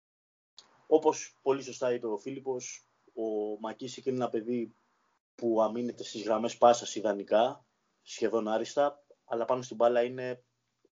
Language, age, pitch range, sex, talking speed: Greek, 20-39, 105-125 Hz, male, 130 wpm